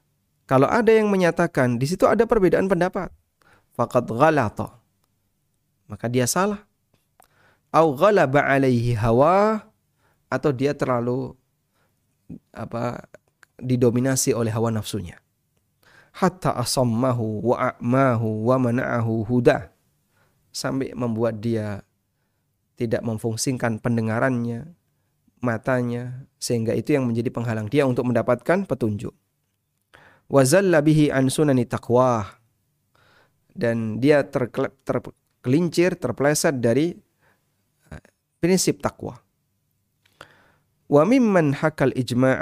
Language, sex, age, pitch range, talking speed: Indonesian, male, 30-49, 115-145 Hz, 90 wpm